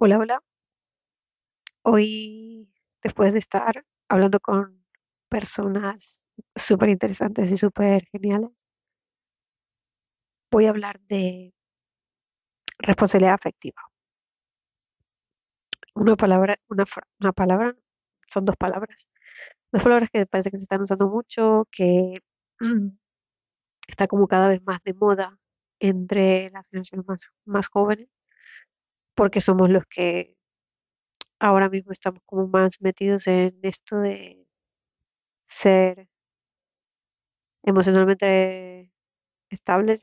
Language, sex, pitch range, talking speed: Spanish, female, 185-210 Hz, 100 wpm